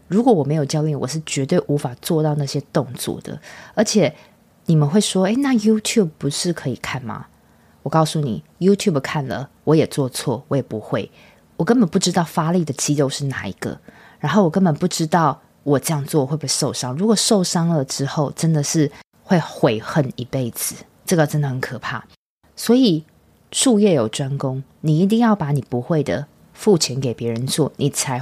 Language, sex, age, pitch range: Chinese, female, 20-39, 135-180 Hz